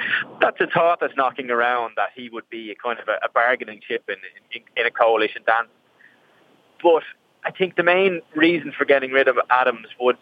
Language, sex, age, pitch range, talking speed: English, male, 20-39, 120-175 Hz, 205 wpm